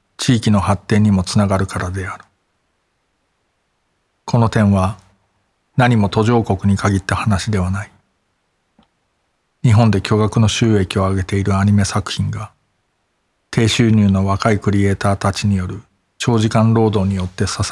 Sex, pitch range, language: male, 95-110 Hz, Japanese